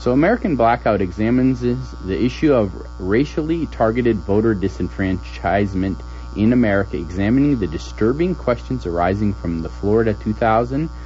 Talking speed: 120 wpm